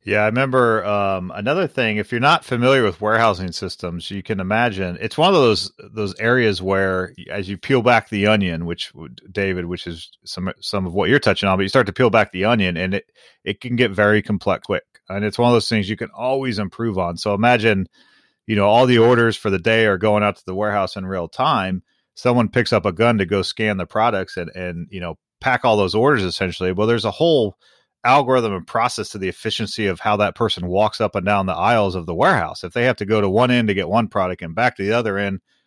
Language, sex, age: English, male, 30-49